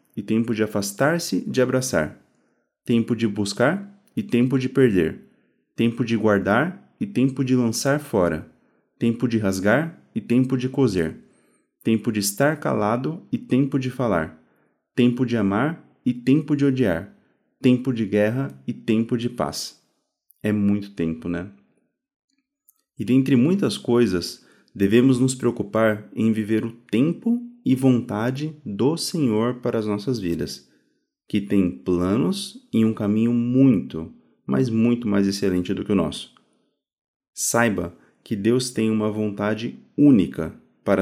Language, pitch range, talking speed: Portuguese, 105-130 Hz, 140 wpm